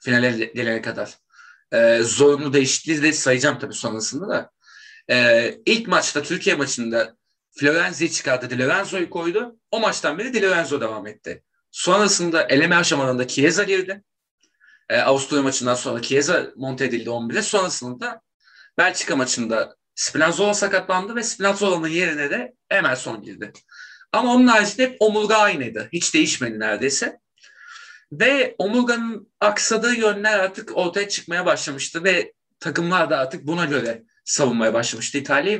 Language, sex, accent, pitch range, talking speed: Turkish, male, native, 135-205 Hz, 130 wpm